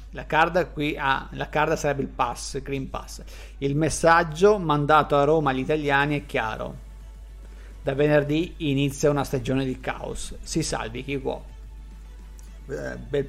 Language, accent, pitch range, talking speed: Italian, native, 130-160 Hz, 155 wpm